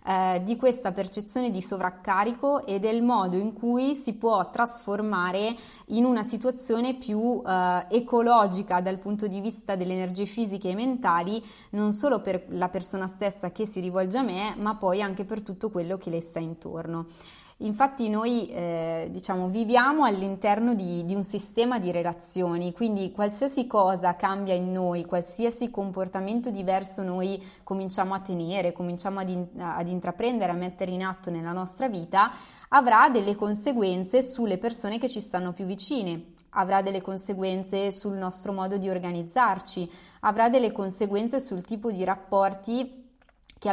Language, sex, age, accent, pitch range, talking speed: Italian, female, 20-39, native, 185-230 Hz, 150 wpm